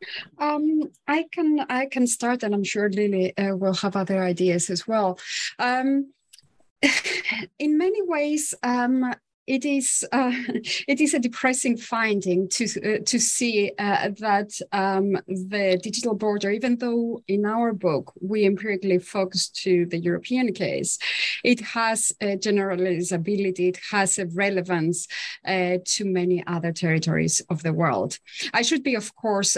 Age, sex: 30-49, female